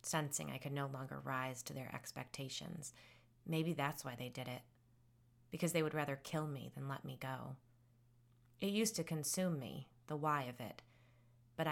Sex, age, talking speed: female, 30-49, 180 wpm